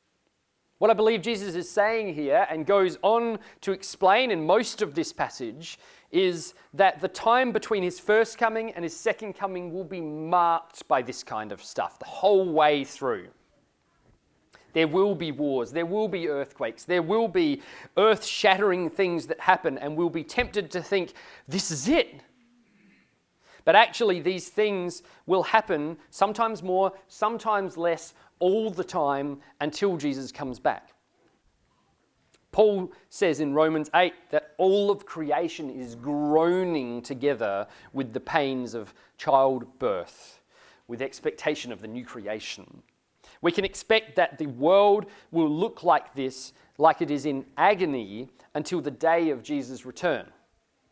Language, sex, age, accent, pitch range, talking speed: English, male, 40-59, Australian, 145-200 Hz, 150 wpm